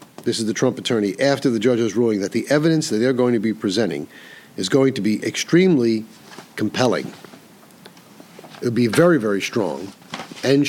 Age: 50-69